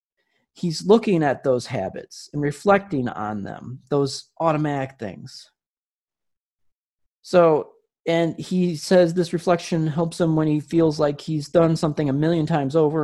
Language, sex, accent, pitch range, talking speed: English, male, American, 130-165 Hz, 145 wpm